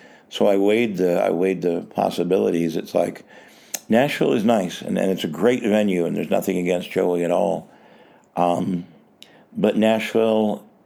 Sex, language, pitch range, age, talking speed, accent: male, English, 85-100 Hz, 60-79, 160 wpm, American